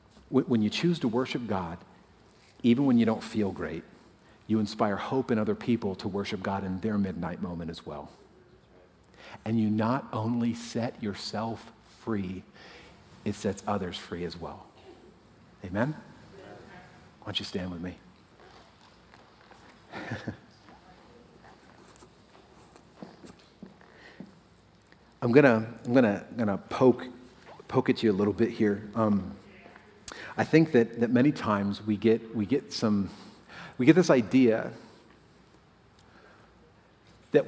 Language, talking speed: English, 125 wpm